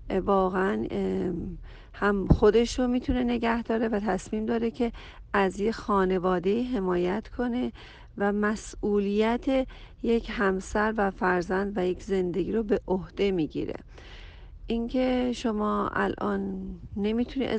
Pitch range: 190-225 Hz